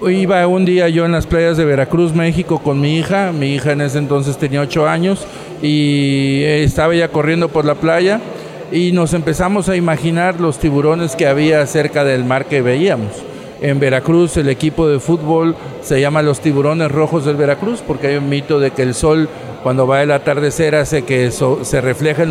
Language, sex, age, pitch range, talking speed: Spanish, male, 50-69, 140-170 Hz, 195 wpm